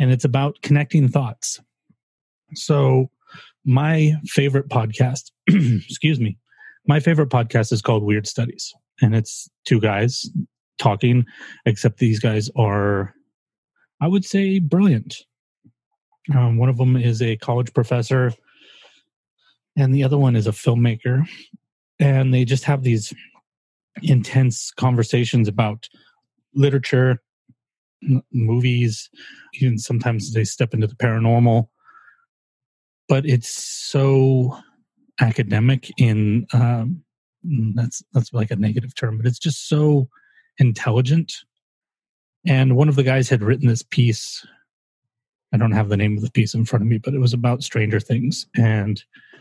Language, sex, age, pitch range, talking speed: English, male, 30-49, 115-140 Hz, 130 wpm